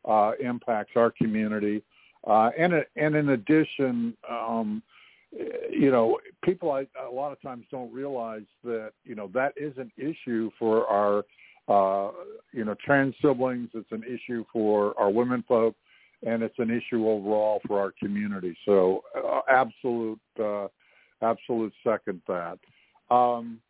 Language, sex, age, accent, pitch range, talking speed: English, male, 60-79, American, 105-130 Hz, 140 wpm